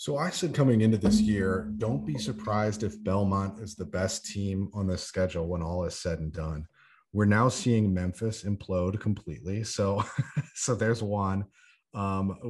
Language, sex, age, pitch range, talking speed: English, male, 30-49, 90-110 Hz, 175 wpm